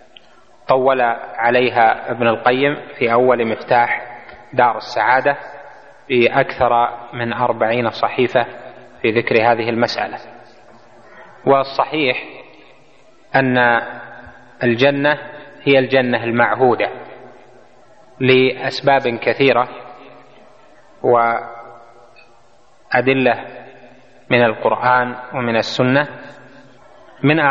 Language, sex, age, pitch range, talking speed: Arabic, male, 30-49, 120-135 Hz, 70 wpm